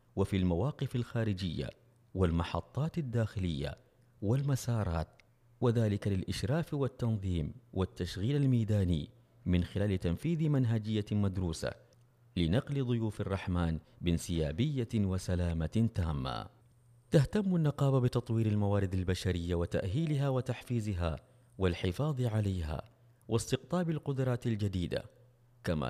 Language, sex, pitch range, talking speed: Arabic, male, 95-125 Hz, 80 wpm